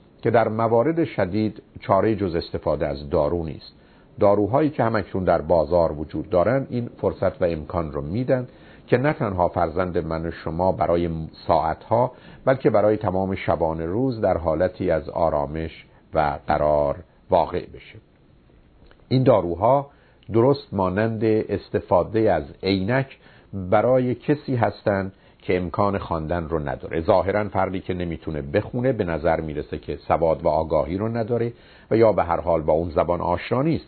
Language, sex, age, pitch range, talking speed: Persian, male, 50-69, 85-125 Hz, 150 wpm